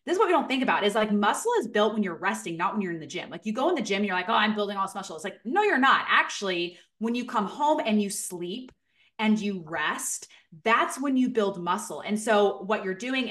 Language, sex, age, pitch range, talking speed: English, female, 20-39, 180-220 Hz, 280 wpm